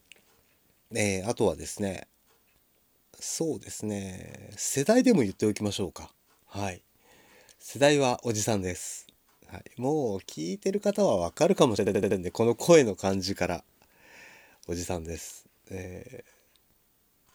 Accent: native